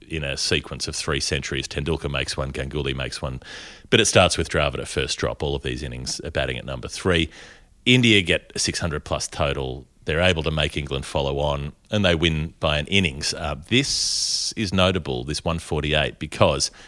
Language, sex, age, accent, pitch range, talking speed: English, male, 30-49, Australian, 70-90 Hz, 190 wpm